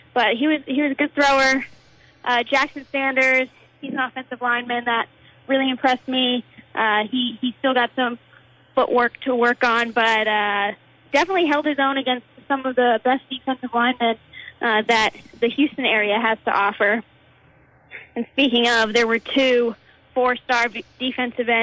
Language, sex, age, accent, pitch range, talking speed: English, female, 20-39, American, 220-255 Hz, 165 wpm